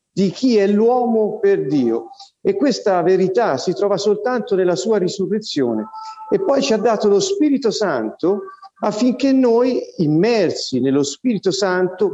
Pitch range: 180-255 Hz